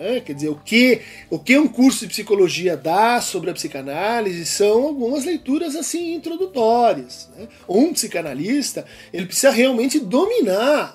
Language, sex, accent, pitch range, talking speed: Portuguese, male, Brazilian, 195-285 Hz, 135 wpm